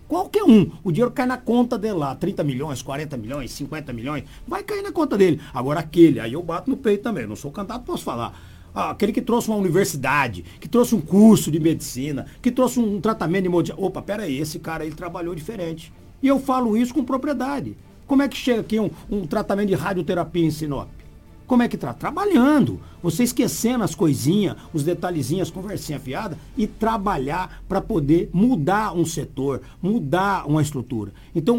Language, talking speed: Portuguese, 195 wpm